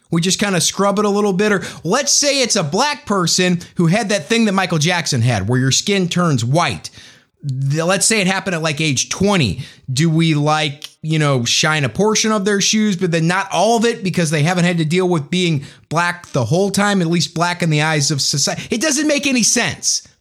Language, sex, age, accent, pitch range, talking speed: English, male, 30-49, American, 145-205 Hz, 235 wpm